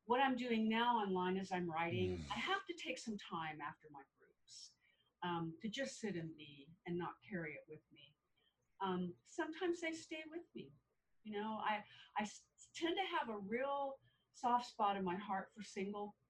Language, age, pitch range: English, 50-69, 170-230 Hz